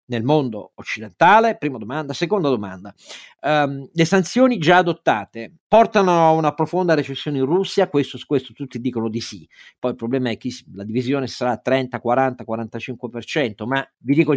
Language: Italian